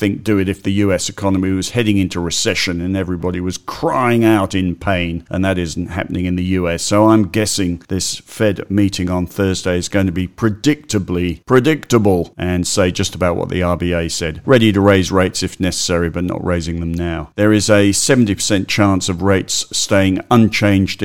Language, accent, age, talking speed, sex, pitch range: English, British, 50-69, 190 wpm, male, 90-110 Hz